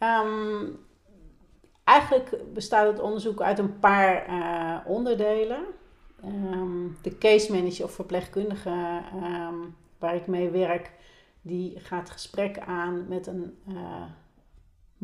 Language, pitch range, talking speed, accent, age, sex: Dutch, 180-205 Hz, 100 wpm, Dutch, 40-59, female